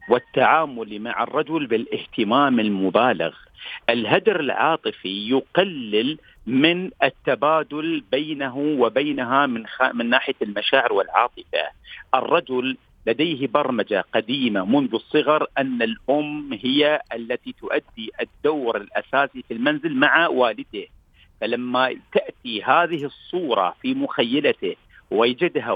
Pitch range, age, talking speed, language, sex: 130-165 Hz, 50-69, 100 wpm, Arabic, male